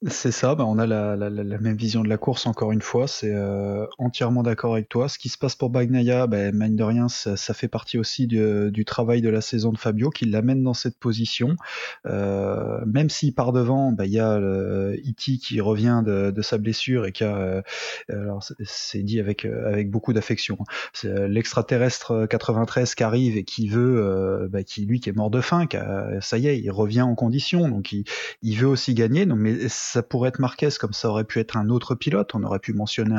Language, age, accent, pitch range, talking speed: French, 20-39, French, 105-125 Hz, 235 wpm